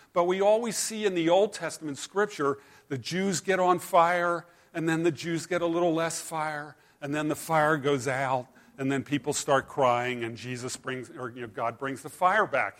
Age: 50-69